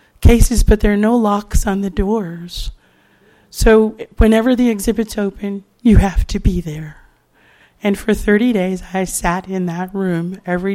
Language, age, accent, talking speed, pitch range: English, 40-59, American, 160 wpm, 180-210 Hz